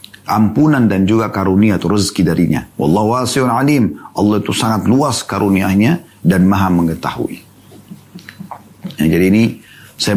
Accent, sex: native, male